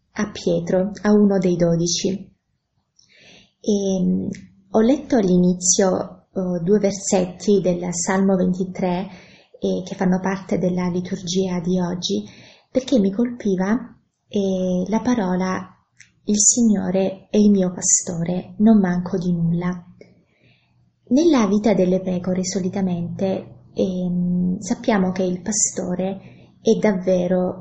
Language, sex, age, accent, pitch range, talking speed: Italian, female, 20-39, native, 180-205 Hz, 115 wpm